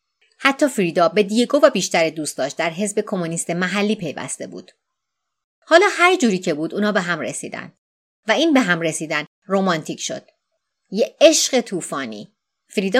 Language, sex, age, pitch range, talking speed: Persian, female, 30-49, 165-230 Hz, 150 wpm